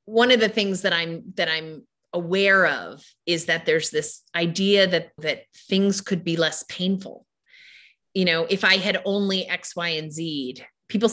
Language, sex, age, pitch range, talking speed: English, female, 30-49, 160-195 Hz, 180 wpm